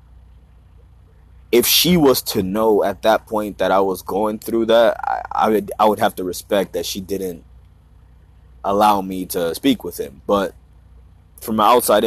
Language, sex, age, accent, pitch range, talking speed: English, male, 20-39, American, 85-105 Hz, 170 wpm